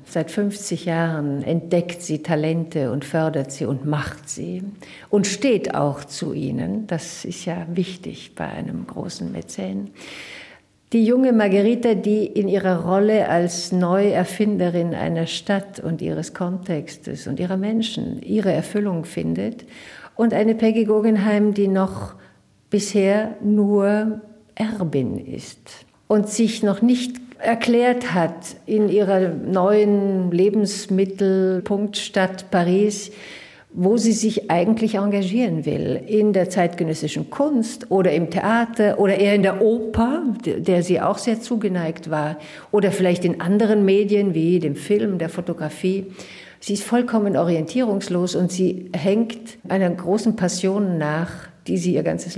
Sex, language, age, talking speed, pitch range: female, German, 60-79, 130 wpm, 170-210 Hz